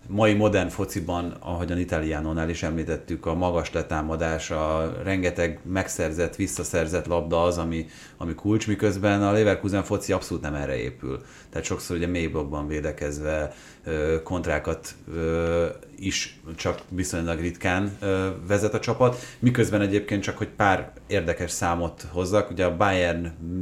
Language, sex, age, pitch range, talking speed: Hungarian, male, 30-49, 80-105 Hz, 130 wpm